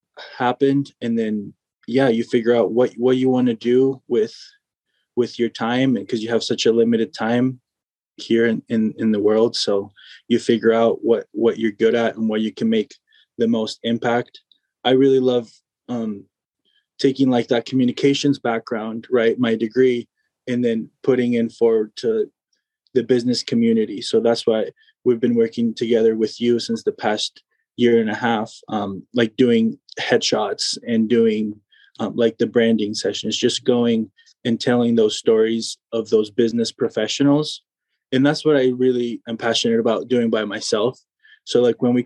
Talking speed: 170 wpm